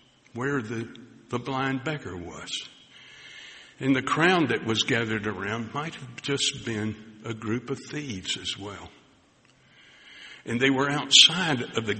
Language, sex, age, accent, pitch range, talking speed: English, male, 60-79, American, 105-130 Hz, 145 wpm